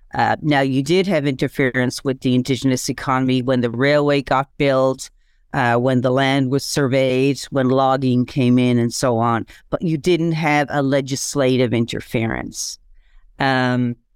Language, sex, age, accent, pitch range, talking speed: English, female, 40-59, American, 130-150 Hz, 155 wpm